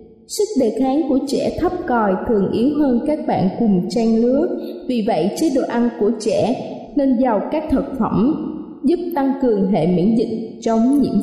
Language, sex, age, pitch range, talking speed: Vietnamese, female, 20-39, 220-275 Hz, 185 wpm